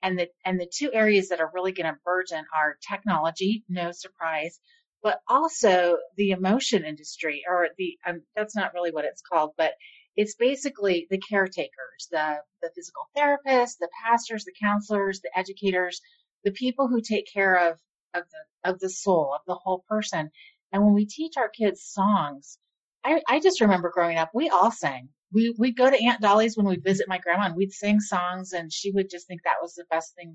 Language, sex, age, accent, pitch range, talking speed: English, female, 30-49, American, 175-220 Hz, 200 wpm